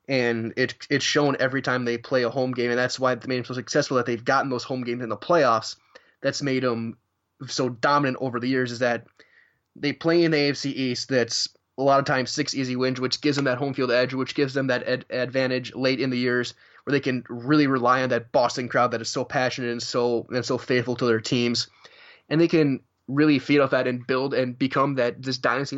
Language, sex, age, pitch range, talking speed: English, male, 20-39, 120-145 Hz, 240 wpm